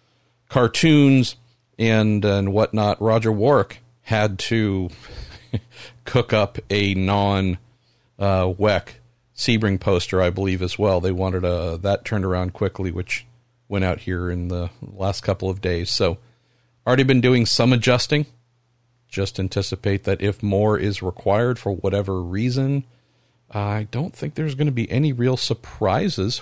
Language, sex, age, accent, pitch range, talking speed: English, male, 50-69, American, 100-125 Hz, 145 wpm